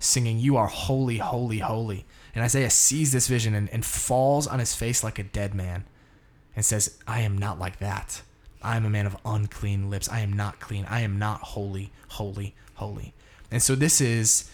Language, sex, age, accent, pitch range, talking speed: English, male, 20-39, American, 105-130 Hz, 200 wpm